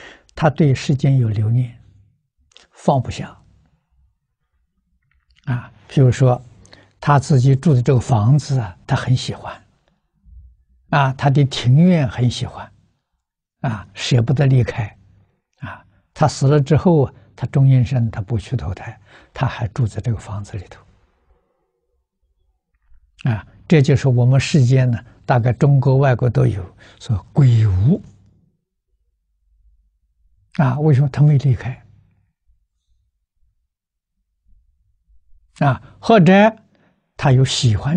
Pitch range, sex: 95-135 Hz, male